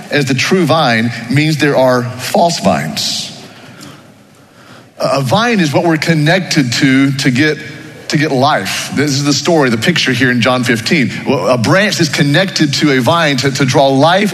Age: 40-59